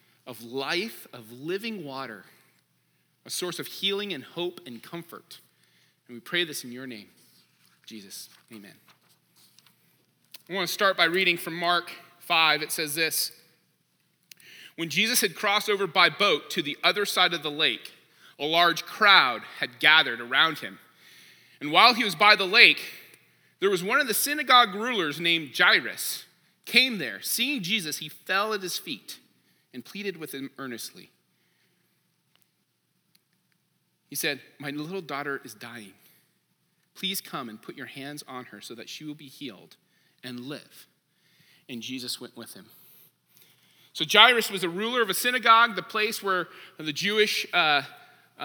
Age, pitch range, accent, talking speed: 30-49, 140-205 Hz, American, 155 wpm